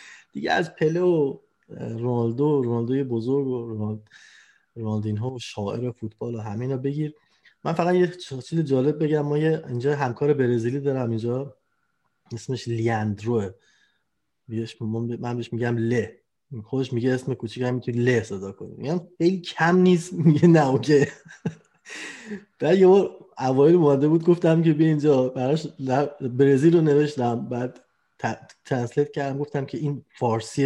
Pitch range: 125-195 Hz